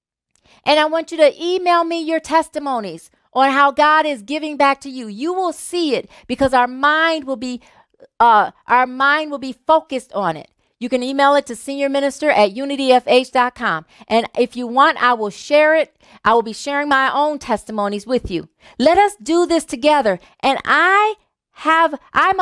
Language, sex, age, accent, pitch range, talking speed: English, female, 40-59, American, 245-315 Hz, 185 wpm